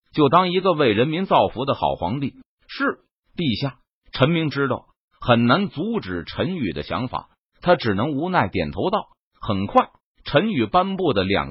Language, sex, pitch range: Chinese, male, 115-175 Hz